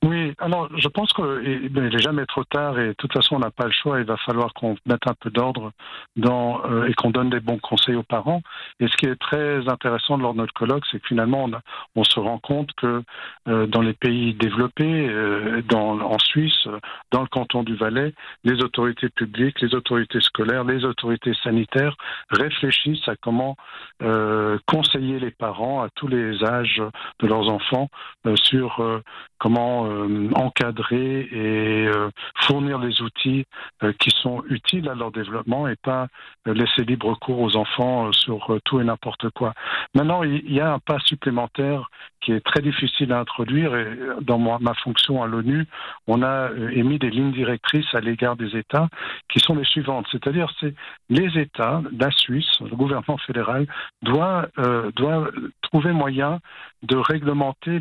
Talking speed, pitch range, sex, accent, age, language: 180 wpm, 115-140 Hz, male, French, 50-69, French